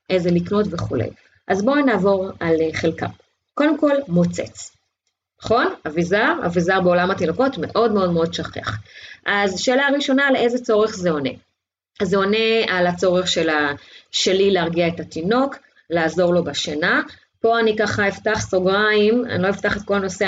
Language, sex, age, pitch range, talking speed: Hebrew, female, 30-49, 165-230 Hz, 150 wpm